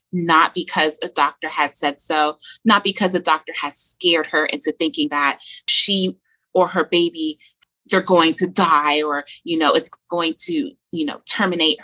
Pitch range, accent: 165-215 Hz, American